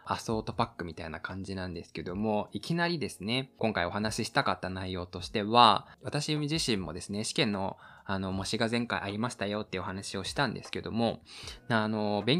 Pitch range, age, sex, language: 95-125 Hz, 20-39, male, Japanese